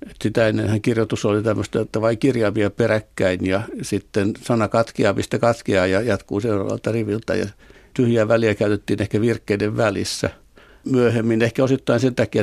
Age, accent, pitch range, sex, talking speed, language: 60-79, native, 100-115 Hz, male, 145 wpm, Finnish